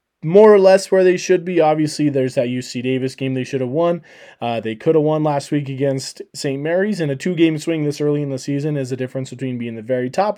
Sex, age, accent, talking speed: male, 20-39, American, 255 wpm